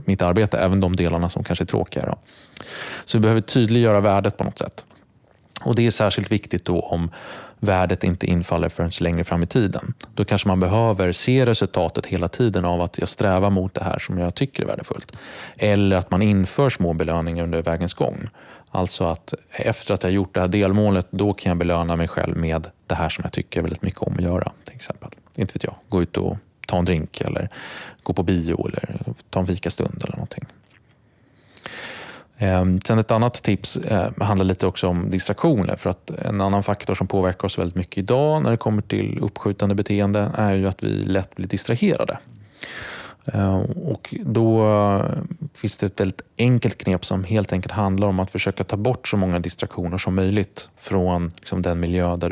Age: 30-49